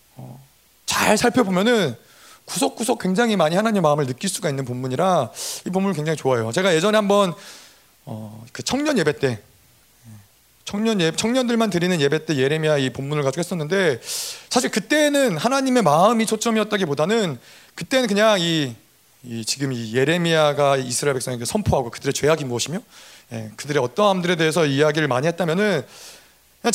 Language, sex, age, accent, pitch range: Korean, male, 30-49, native, 140-220 Hz